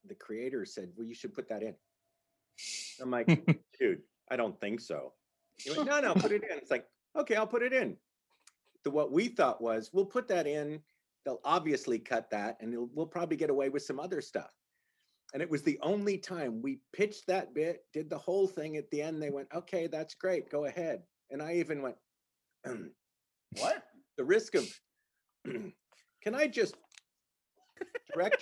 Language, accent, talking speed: English, American, 185 wpm